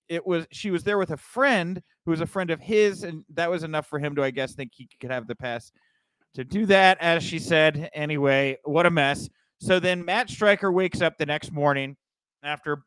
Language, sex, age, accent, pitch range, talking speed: English, male, 30-49, American, 135-185 Hz, 230 wpm